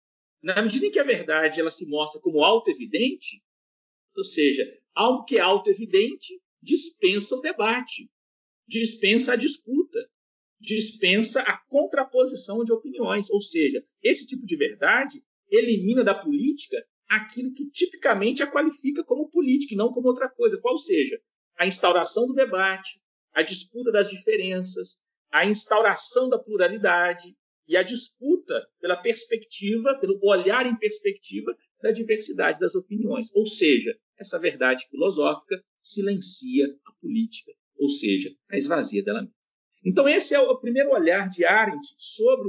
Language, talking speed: Portuguese, 140 wpm